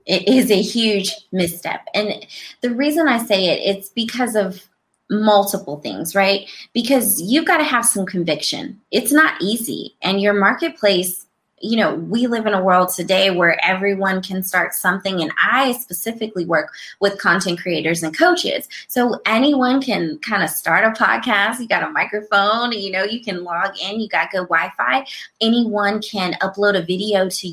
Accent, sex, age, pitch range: American, female, 20-39, 180-235 Hz